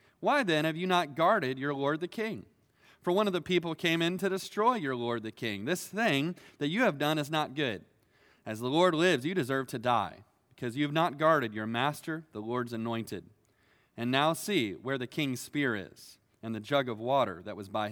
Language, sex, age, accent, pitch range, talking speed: English, male, 30-49, American, 120-180 Hz, 220 wpm